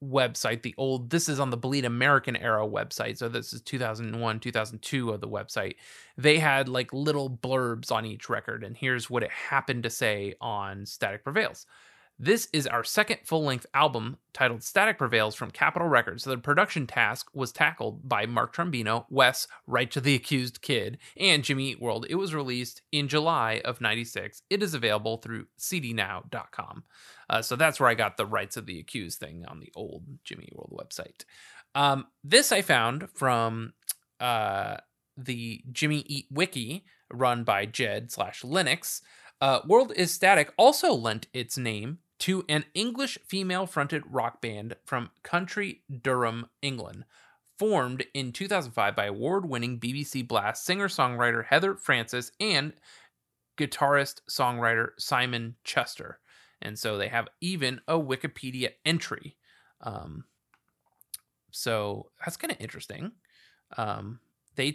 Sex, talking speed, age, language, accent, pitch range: male, 145 wpm, 30-49, English, American, 115-150 Hz